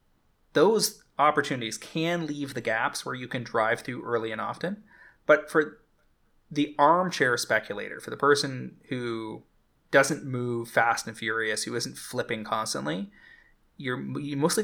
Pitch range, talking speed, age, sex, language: 115-145 Hz, 145 wpm, 20-39, male, English